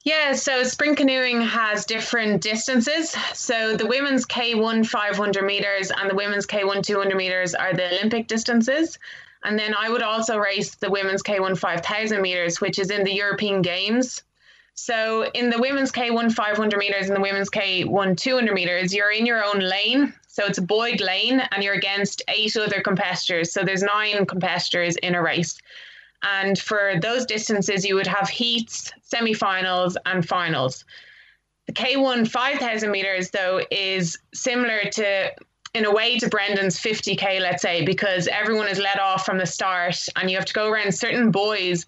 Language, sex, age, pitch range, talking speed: English, female, 20-39, 195-235 Hz, 170 wpm